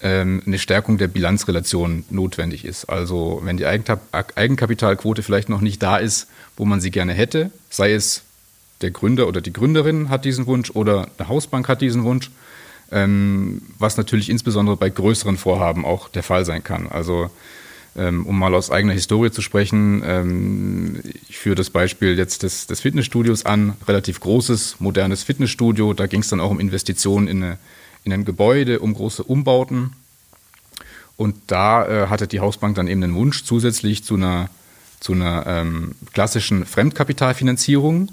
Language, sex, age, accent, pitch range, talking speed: German, male, 30-49, German, 95-120 Hz, 155 wpm